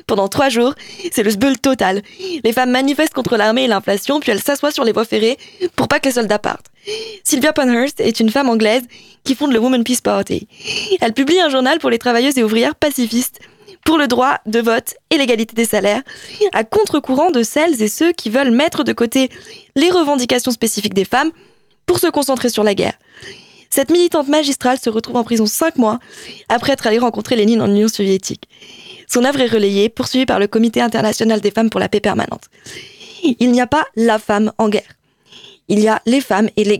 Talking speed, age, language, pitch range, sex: 205 wpm, 20-39, French, 220-285 Hz, female